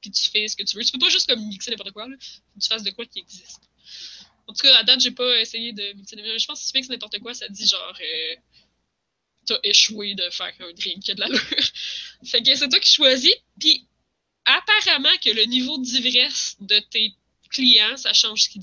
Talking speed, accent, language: 240 wpm, Canadian, French